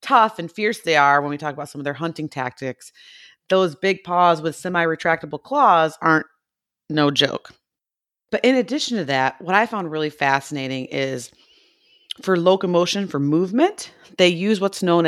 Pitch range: 145-195 Hz